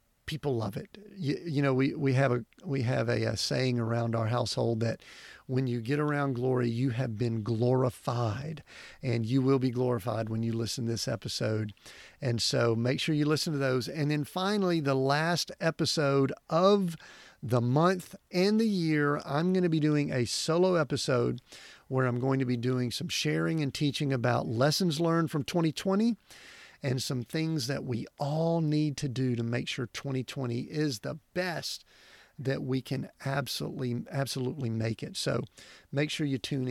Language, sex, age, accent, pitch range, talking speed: English, male, 50-69, American, 120-155 Hz, 180 wpm